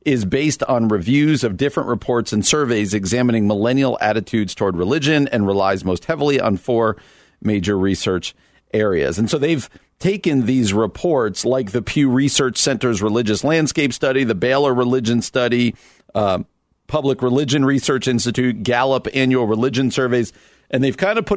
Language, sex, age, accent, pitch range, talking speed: English, male, 50-69, American, 110-135 Hz, 155 wpm